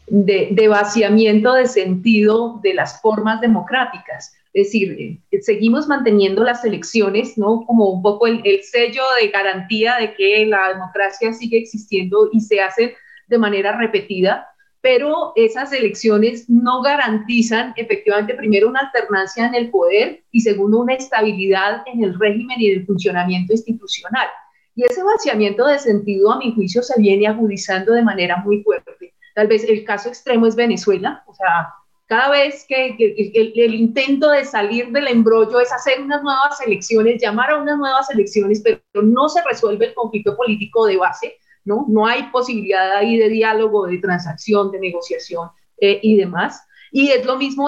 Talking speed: 170 wpm